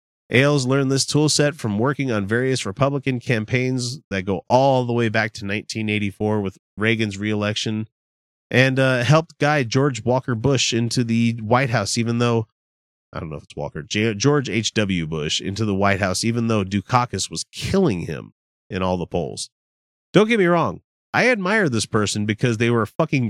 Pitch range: 90-130 Hz